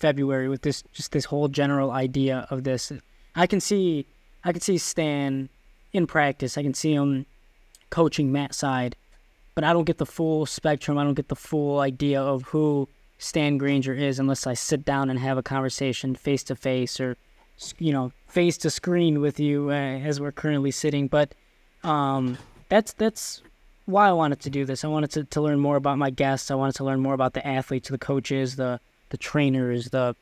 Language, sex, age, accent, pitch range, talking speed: English, male, 10-29, American, 130-145 Hz, 200 wpm